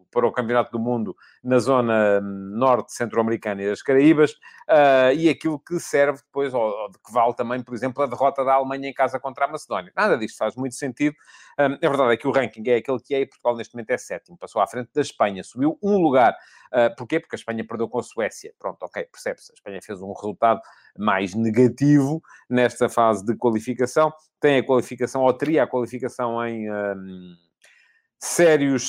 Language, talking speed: Portuguese, 190 wpm